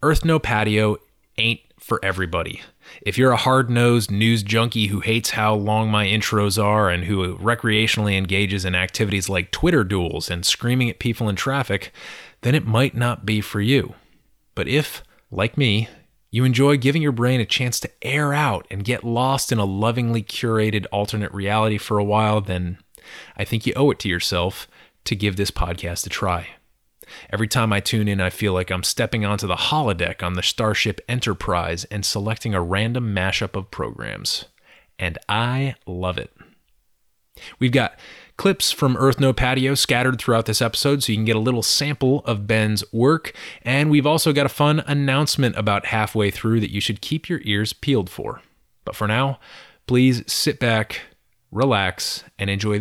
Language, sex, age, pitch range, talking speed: English, male, 30-49, 100-130 Hz, 180 wpm